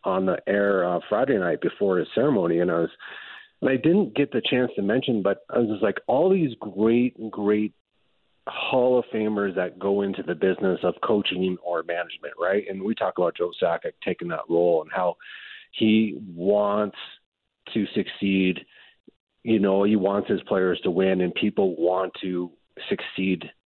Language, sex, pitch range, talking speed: English, male, 95-115 Hz, 175 wpm